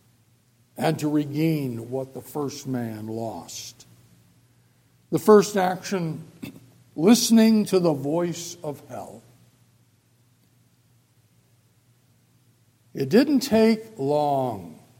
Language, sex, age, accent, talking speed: English, male, 60-79, American, 85 wpm